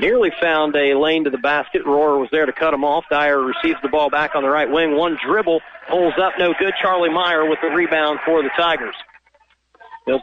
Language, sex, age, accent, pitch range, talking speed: English, male, 40-59, American, 145-180 Hz, 225 wpm